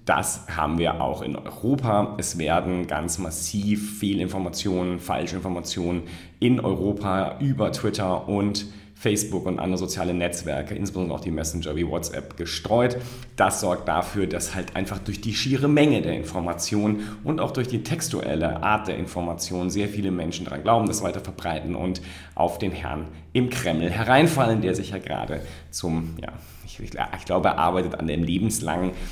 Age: 40-59